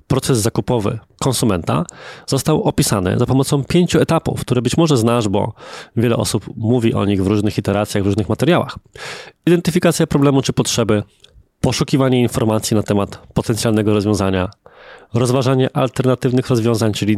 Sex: male